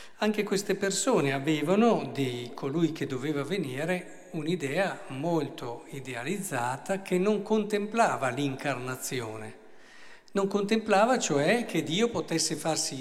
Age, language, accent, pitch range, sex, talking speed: 50-69, Italian, native, 140-195 Hz, male, 105 wpm